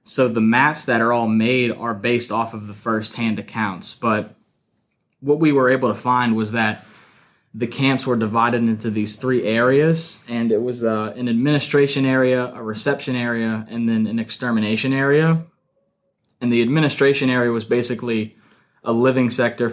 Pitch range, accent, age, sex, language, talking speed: 115-125 Hz, American, 20-39, male, English, 165 wpm